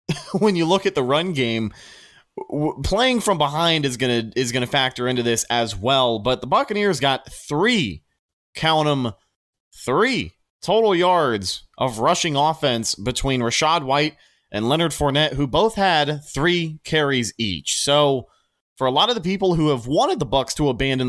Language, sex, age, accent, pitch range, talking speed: English, male, 20-39, American, 130-160 Hz, 170 wpm